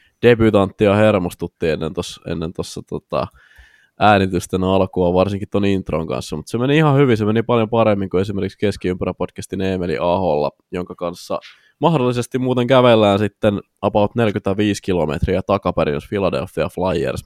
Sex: male